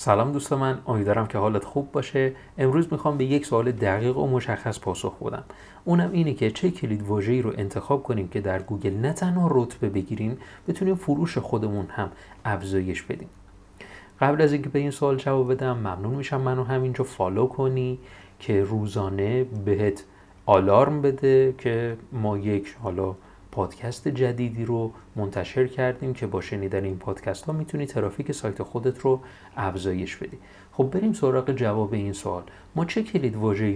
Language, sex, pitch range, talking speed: Persian, male, 100-130 Hz, 160 wpm